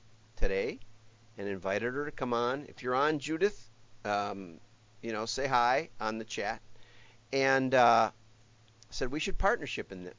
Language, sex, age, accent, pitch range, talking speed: English, male, 50-69, American, 110-145 Hz, 160 wpm